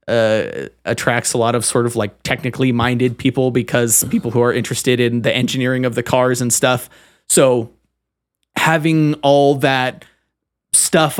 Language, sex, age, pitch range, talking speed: English, male, 30-49, 110-130 Hz, 155 wpm